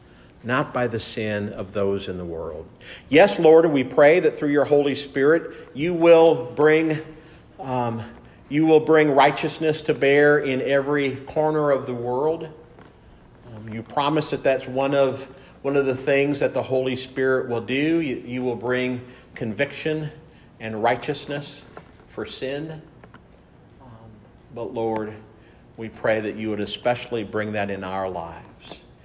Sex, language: male, English